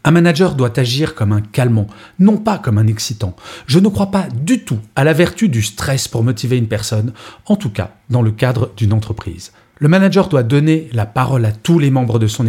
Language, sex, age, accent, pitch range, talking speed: French, male, 40-59, French, 110-160 Hz, 225 wpm